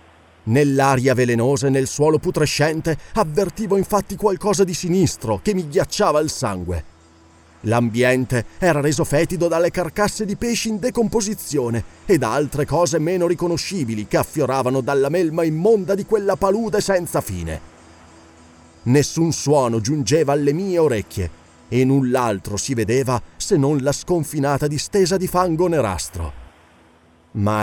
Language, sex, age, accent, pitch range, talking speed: Italian, male, 30-49, native, 105-175 Hz, 135 wpm